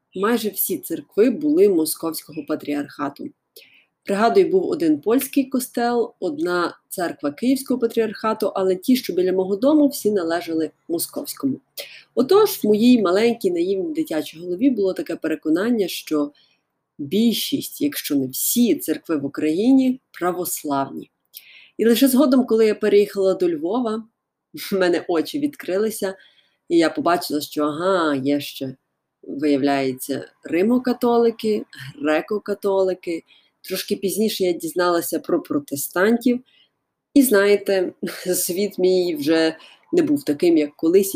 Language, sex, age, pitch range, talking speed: Ukrainian, female, 30-49, 170-275 Hz, 120 wpm